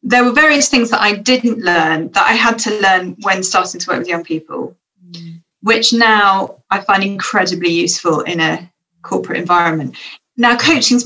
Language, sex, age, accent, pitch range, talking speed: English, female, 30-49, British, 170-220 Hz, 175 wpm